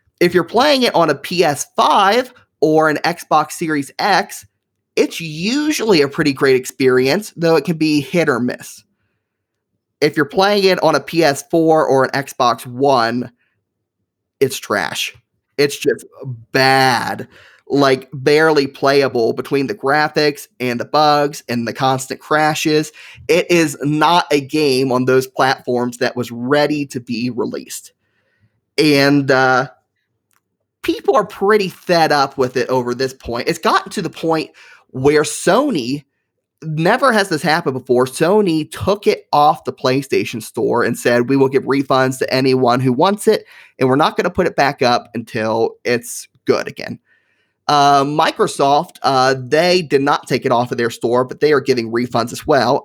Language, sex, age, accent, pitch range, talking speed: English, male, 30-49, American, 125-155 Hz, 165 wpm